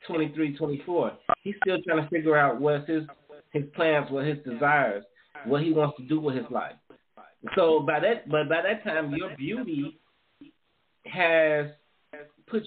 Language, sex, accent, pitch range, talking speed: English, male, American, 150-185 Hz, 175 wpm